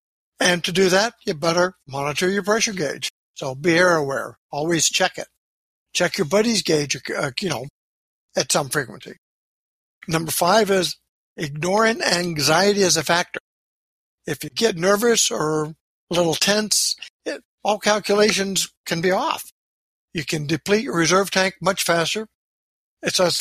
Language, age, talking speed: English, 60-79, 145 wpm